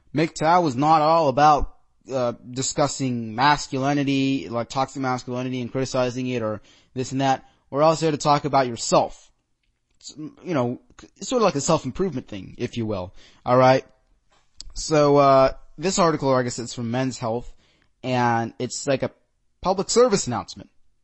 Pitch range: 125-155 Hz